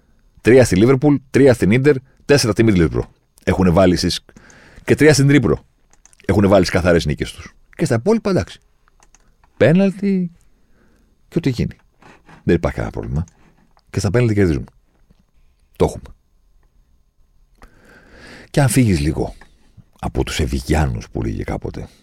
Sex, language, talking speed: male, Greek, 135 wpm